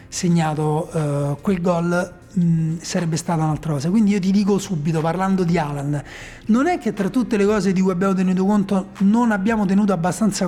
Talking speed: 185 wpm